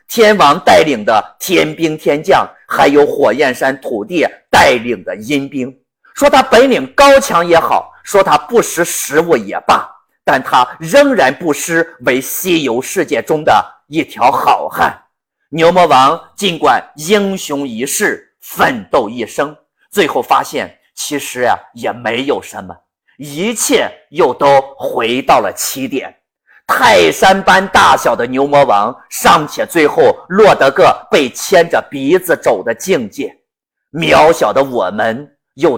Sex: male